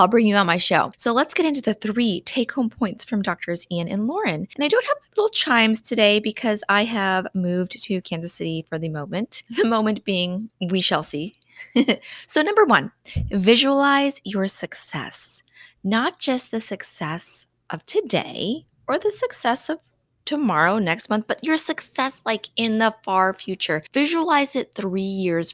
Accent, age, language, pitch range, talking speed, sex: American, 20-39, English, 180-245 Hz, 175 wpm, female